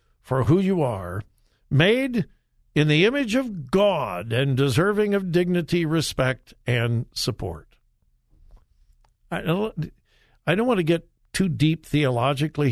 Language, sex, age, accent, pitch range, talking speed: English, male, 60-79, American, 130-195 Hz, 120 wpm